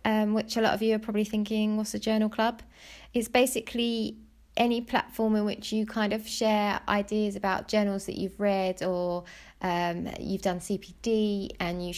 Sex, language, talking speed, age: female, English, 175 wpm, 20-39